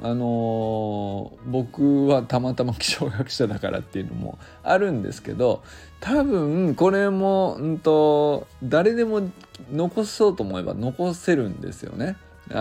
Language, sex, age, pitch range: Japanese, male, 20-39, 105-145 Hz